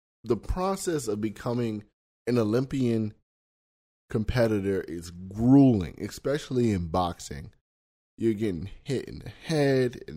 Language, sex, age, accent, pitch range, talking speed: English, male, 20-39, American, 90-120 Hz, 110 wpm